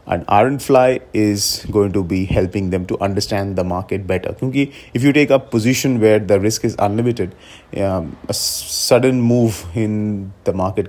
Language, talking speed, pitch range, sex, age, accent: English, 170 wpm, 90-120 Hz, male, 30-49, Indian